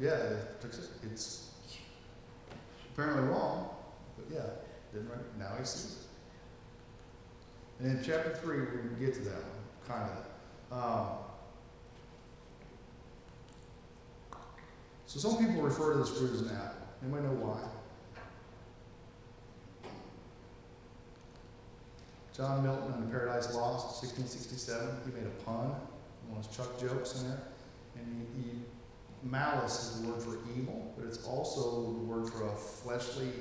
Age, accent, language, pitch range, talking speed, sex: 40-59, American, English, 115-125 Hz, 135 wpm, male